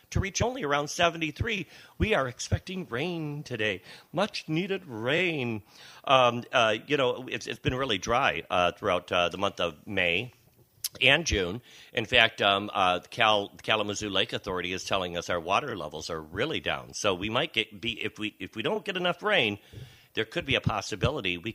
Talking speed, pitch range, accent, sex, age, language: 190 wpm, 105-140 Hz, American, male, 50-69, English